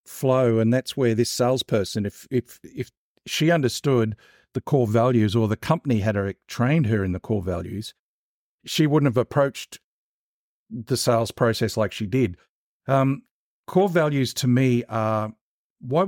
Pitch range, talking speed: 110-135 Hz, 165 wpm